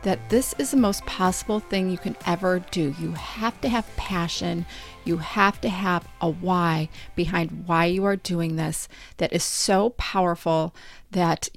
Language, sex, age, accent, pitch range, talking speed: English, female, 40-59, American, 170-210 Hz, 170 wpm